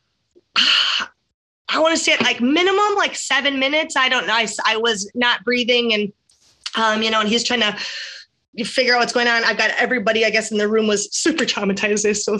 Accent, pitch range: American, 215-275 Hz